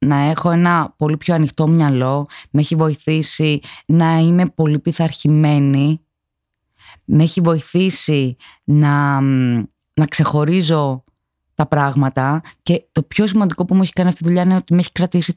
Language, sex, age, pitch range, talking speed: Greek, female, 20-39, 140-175 Hz, 150 wpm